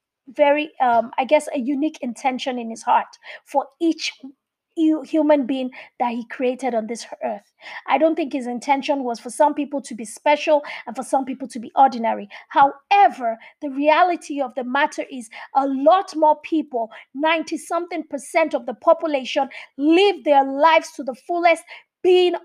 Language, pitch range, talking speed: English, 265-325 Hz, 170 wpm